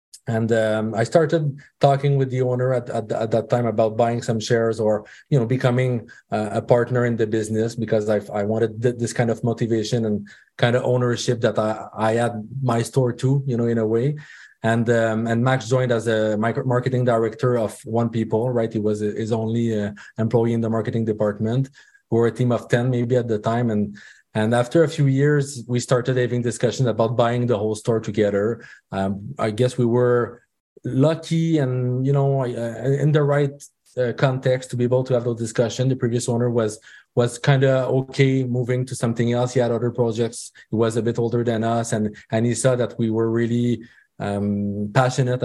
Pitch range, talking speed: 110-125 Hz, 205 wpm